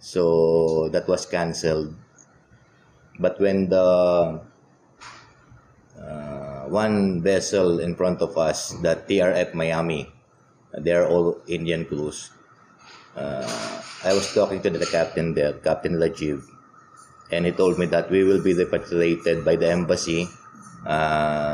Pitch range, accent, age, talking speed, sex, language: 80-95 Hz, Filipino, 20-39, 125 wpm, male, English